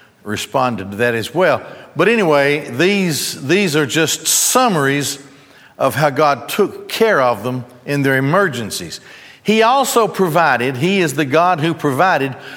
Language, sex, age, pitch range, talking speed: English, male, 60-79, 135-185 Hz, 150 wpm